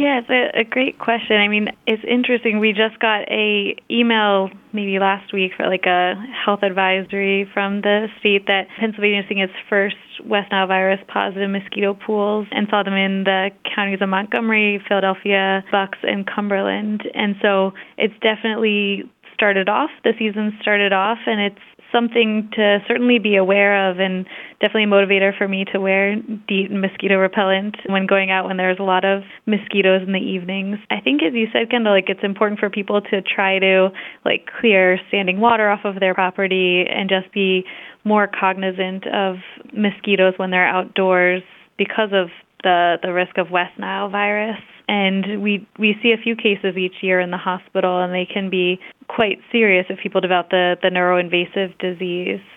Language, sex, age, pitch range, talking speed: English, female, 20-39, 190-210 Hz, 180 wpm